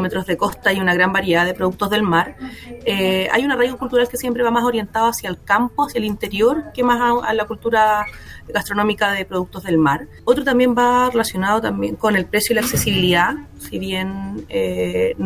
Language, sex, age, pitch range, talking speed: Spanish, female, 30-49, 185-230 Hz, 200 wpm